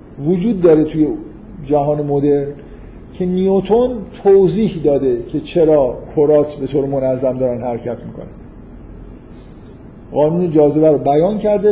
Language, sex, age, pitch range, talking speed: Persian, male, 50-69, 145-185 Hz, 120 wpm